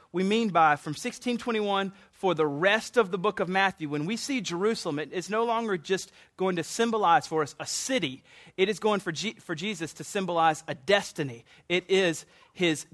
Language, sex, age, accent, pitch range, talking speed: English, male, 30-49, American, 160-205 Hz, 195 wpm